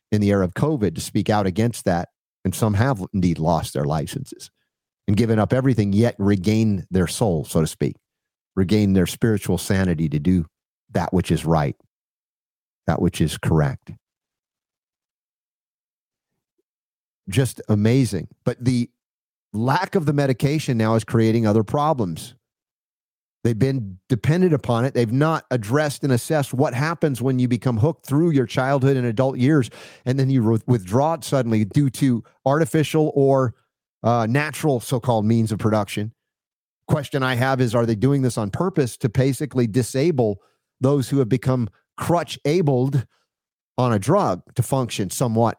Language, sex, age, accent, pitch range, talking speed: English, male, 50-69, American, 105-135 Hz, 155 wpm